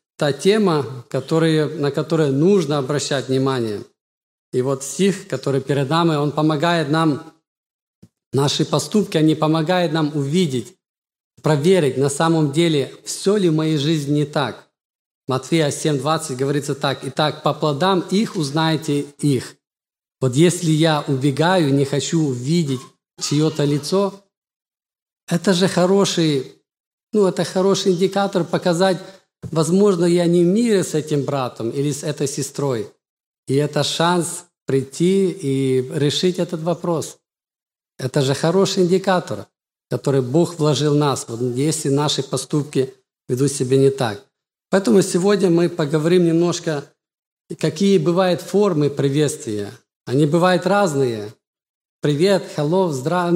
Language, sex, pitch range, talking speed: Russian, male, 140-175 Hz, 125 wpm